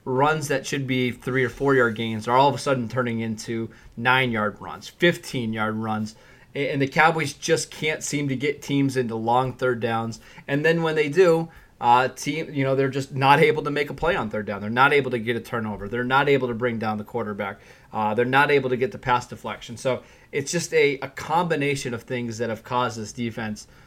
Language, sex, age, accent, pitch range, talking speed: English, male, 20-39, American, 115-140 Hz, 230 wpm